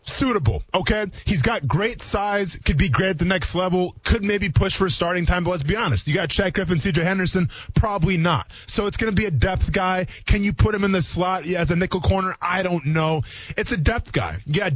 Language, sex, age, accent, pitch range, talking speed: English, male, 20-39, American, 145-205 Hz, 235 wpm